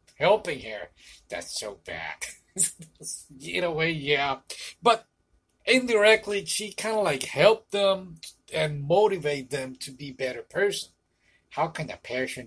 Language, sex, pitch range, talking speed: English, male, 130-170 Hz, 135 wpm